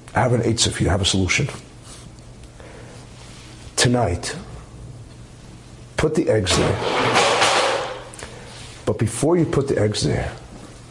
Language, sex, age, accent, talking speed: English, male, 40-59, American, 120 wpm